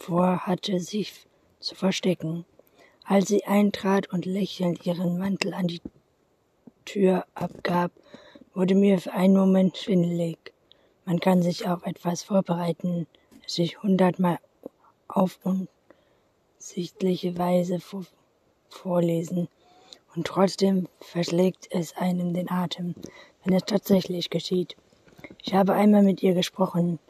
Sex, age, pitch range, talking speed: female, 20-39, 175-195 Hz, 110 wpm